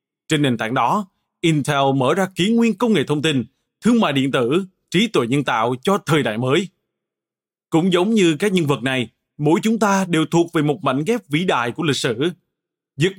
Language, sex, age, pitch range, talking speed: Vietnamese, male, 20-39, 135-185 Hz, 215 wpm